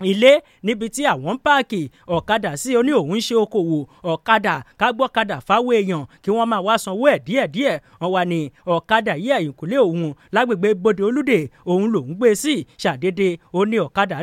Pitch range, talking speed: 180-240 Hz, 180 wpm